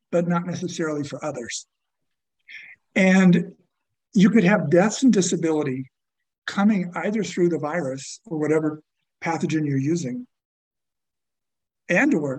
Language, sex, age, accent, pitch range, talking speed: English, male, 50-69, American, 150-200 Hz, 110 wpm